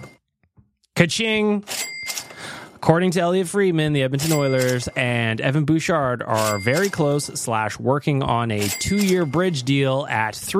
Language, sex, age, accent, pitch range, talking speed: English, male, 20-39, American, 120-165 Hz, 125 wpm